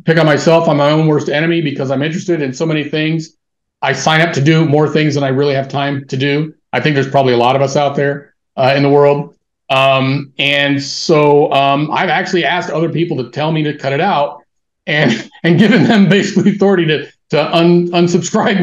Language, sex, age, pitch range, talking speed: English, male, 40-59, 130-160 Hz, 220 wpm